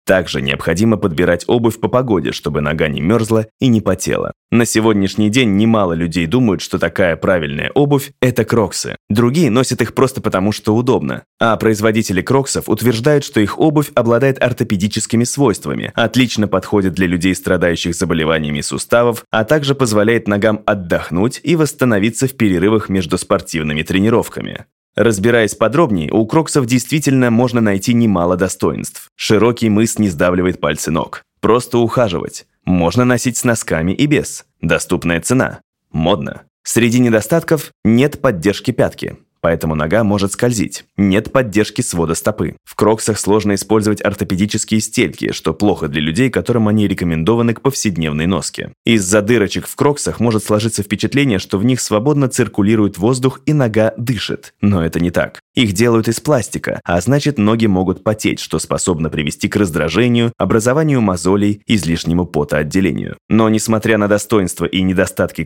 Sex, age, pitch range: male, 20-39, 95-120 Hz